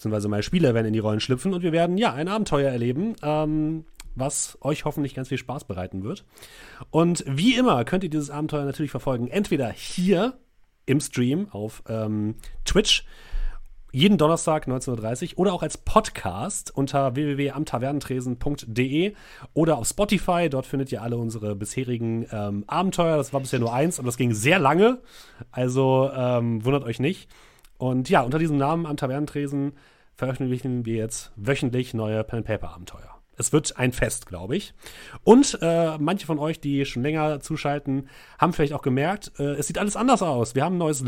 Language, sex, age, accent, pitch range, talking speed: German, male, 30-49, German, 120-160 Hz, 175 wpm